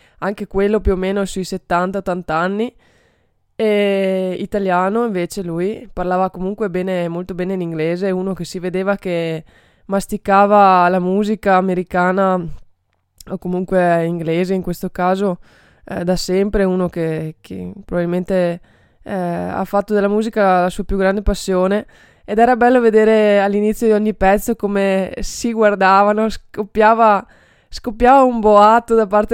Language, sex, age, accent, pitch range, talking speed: Italian, female, 20-39, native, 185-215 Hz, 140 wpm